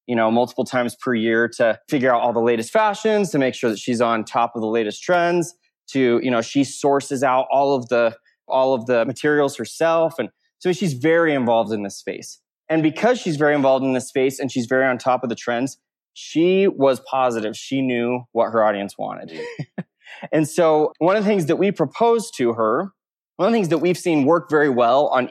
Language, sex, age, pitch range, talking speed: English, male, 20-39, 125-165 Hz, 220 wpm